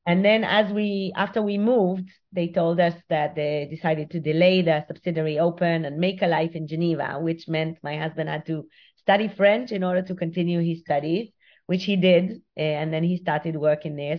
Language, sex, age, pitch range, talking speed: English, female, 30-49, 160-190 Hz, 200 wpm